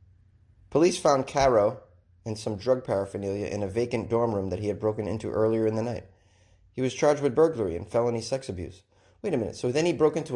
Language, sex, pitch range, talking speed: English, male, 95-125 Hz, 220 wpm